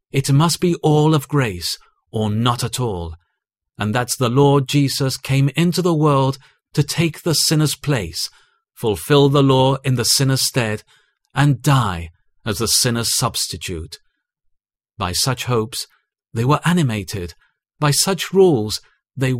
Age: 40-59